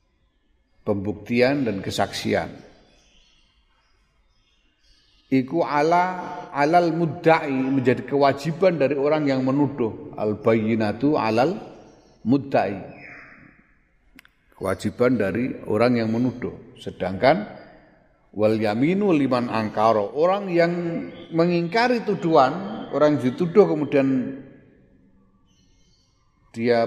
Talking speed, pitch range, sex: 80 wpm, 110-160 Hz, male